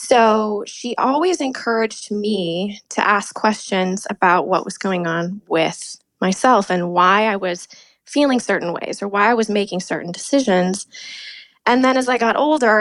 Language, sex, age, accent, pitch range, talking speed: English, female, 20-39, American, 185-245 Hz, 165 wpm